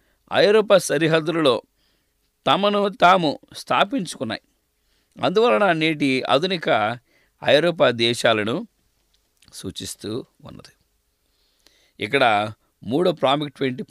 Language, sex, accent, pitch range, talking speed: English, male, Indian, 135-205 Hz, 80 wpm